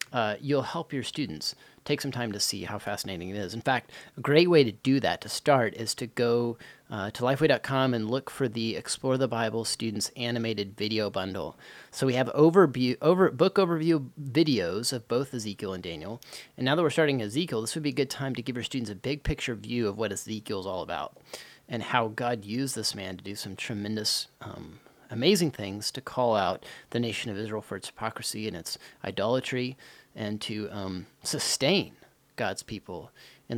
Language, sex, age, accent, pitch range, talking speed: English, male, 30-49, American, 110-140 Hz, 200 wpm